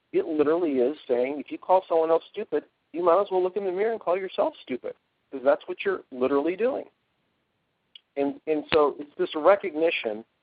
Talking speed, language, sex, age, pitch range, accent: 195 wpm, English, male, 50-69, 125-160 Hz, American